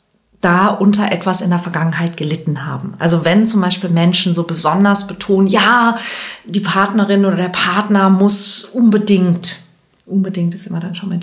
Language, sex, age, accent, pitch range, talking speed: German, female, 40-59, German, 175-215 Hz, 160 wpm